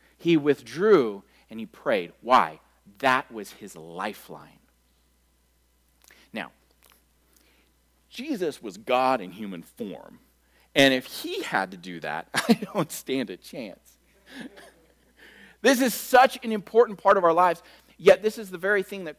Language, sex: English, male